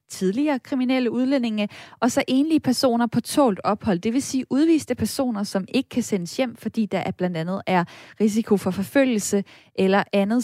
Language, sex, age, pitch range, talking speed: Danish, female, 20-39, 195-245 Hz, 180 wpm